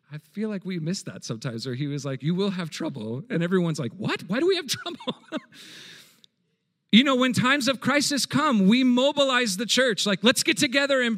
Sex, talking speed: male, 215 wpm